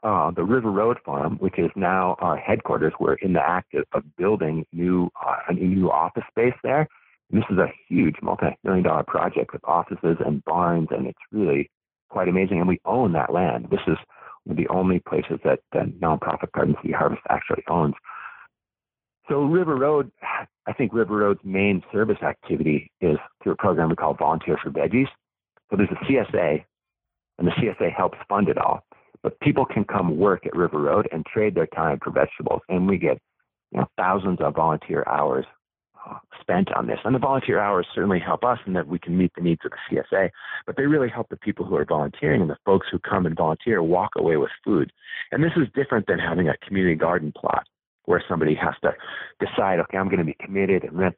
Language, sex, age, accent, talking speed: English, male, 50-69, American, 205 wpm